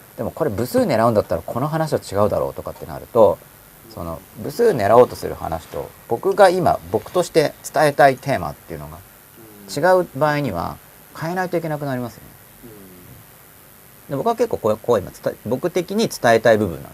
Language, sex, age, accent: Japanese, male, 40-59, native